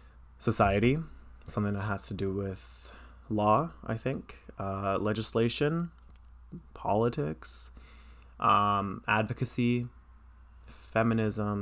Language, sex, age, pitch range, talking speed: English, male, 20-39, 95-115 Hz, 85 wpm